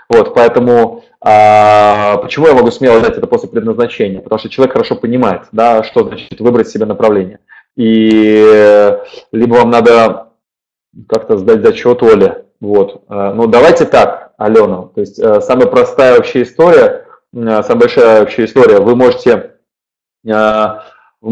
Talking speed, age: 125 wpm, 20-39